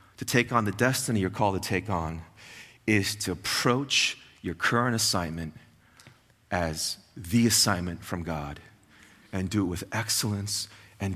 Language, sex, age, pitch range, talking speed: English, male, 40-59, 100-125 Hz, 145 wpm